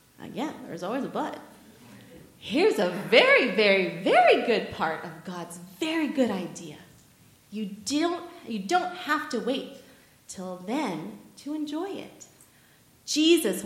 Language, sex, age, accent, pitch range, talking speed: English, female, 30-49, American, 200-320 Hz, 135 wpm